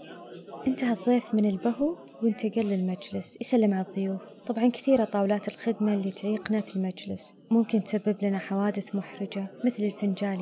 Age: 20-39